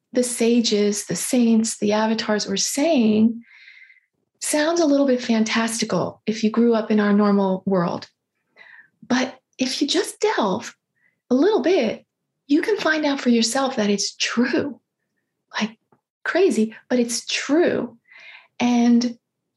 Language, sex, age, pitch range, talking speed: English, female, 30-49, 225-290 Hz, 135 wpm